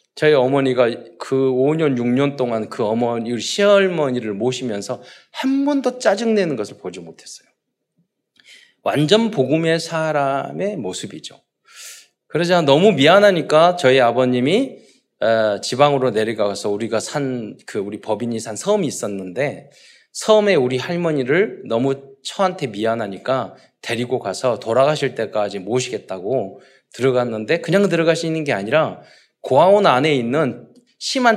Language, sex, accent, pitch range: Korean, male, native, 125-190 Hz